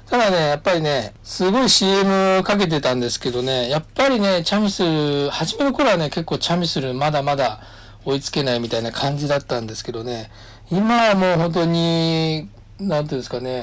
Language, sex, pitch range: Japanese, male, 110-155 Hz